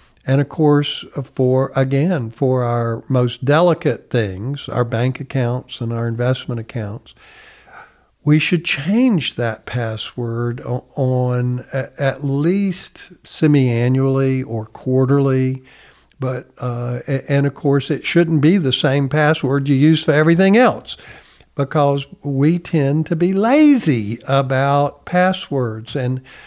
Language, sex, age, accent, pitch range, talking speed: English, male, 60-79, American, 125-155 Hz, 120 wpm